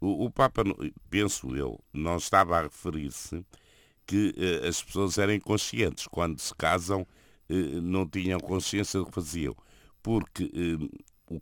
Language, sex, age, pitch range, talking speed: Portuguese, male, 50-69, 75-100 Hz, 125 wpm